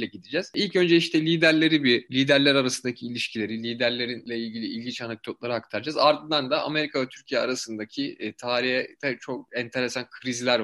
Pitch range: 120-175 Hz